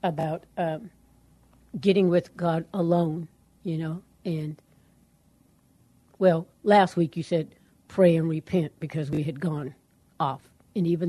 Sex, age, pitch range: female, 60-79, 165-195 Hz